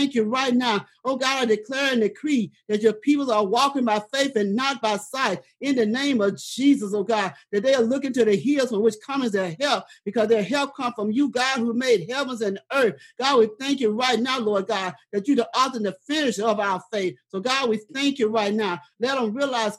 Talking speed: 245 wpm